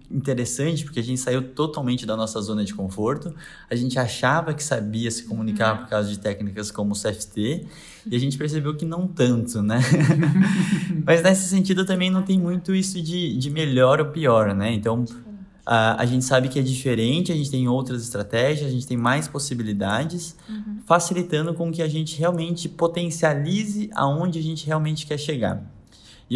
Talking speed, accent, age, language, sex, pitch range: 180 wpm, Brazilian, 20-39, Portuguese, male, 120-155 Hz